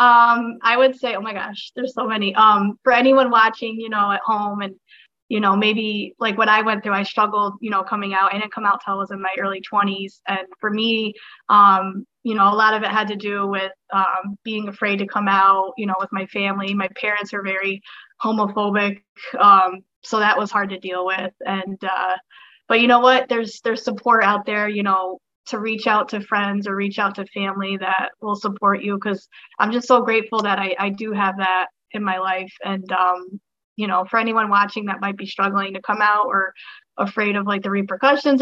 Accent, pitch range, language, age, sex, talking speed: American, 195-220 Hz, English, 20-39, female, 225 wpm